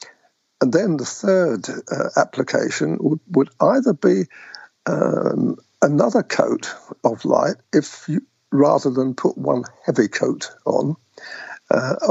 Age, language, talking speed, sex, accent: 60-79, English, 125 wpm, male, British